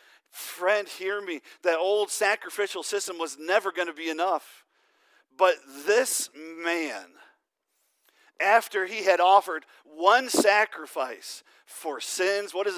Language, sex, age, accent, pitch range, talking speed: English, male, 40-59, American, 160-205 Hz, 115 wpm